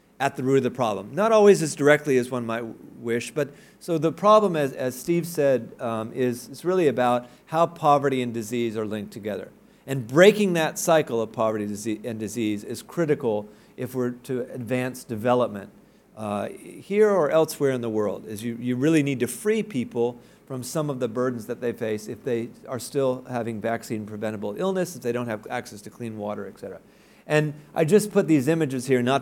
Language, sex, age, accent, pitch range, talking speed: English, male, 40-59, American, 110-150 Hz, 205 wpm